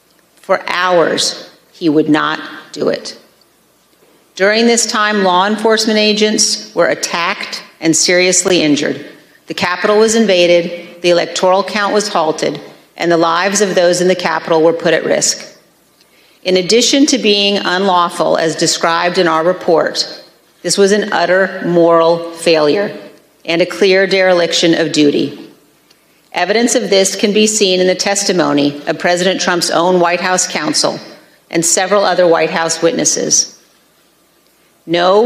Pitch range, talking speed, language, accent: 165-200 Hz, 145 wpm, English, American